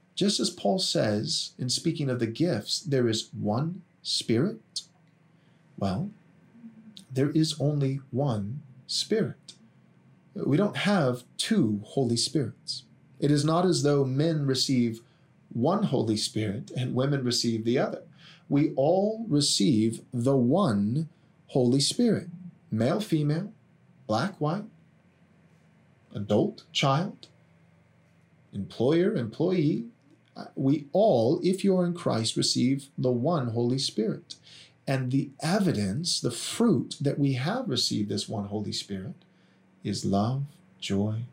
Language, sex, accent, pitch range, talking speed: English, male, American, 115-170 Hz, 120 wpm